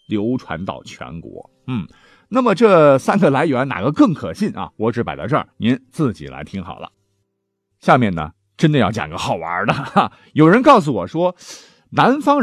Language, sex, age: Chinese, male, 50-69